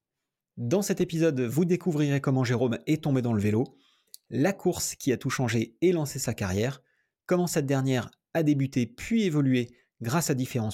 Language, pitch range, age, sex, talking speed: French, 120-160 Hz, 30-49, male, 180 wpm